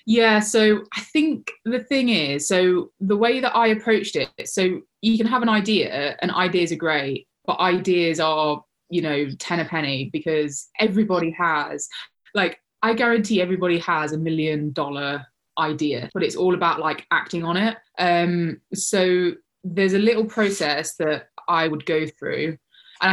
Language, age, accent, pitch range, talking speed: English, 20-39, British, 155-190 Hz, 165 wpm